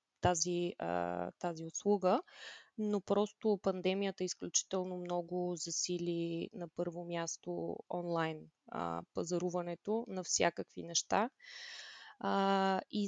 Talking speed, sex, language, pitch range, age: 95 wpm, female, Bulgarian, 175-205 Hz, 20-39